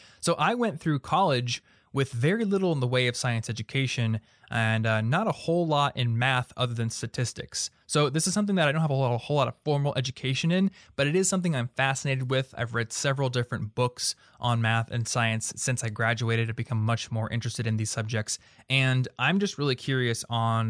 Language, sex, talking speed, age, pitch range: English, male, 210 wpm, 20-39, 115-145 Hz